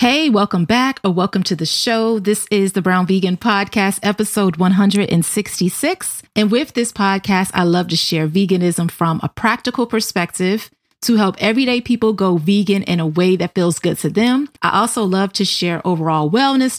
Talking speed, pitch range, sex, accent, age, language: 180 wpm, 175-230 Hz, female, American, 30-49, English